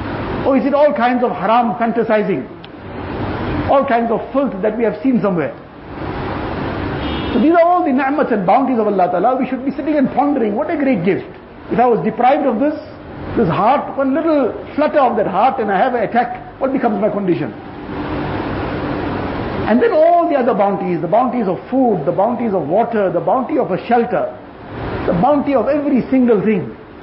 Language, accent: English, Indian